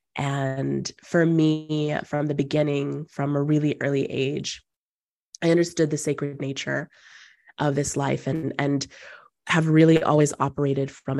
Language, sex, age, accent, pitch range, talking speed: English, female, 20-39, American, 135-150 Hz, 140 wpm